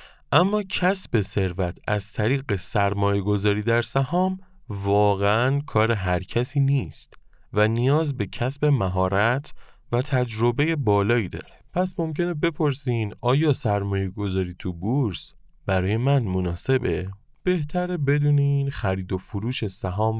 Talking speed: 120 wpm